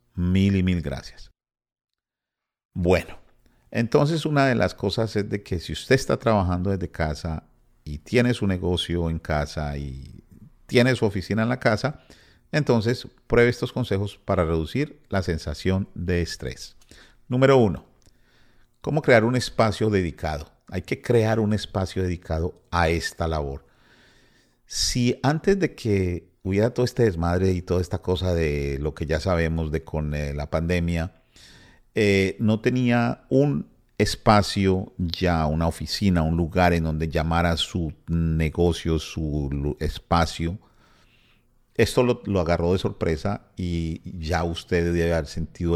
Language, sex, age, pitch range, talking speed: Spanish, male, 50-69, 80-110 Hz, 145 wpm